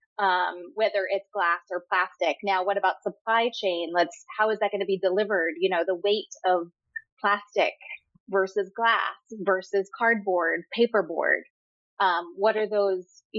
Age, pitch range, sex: 20-39, 180-210 Hz, female